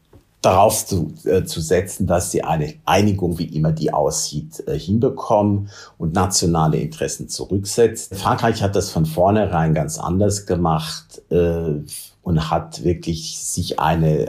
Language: German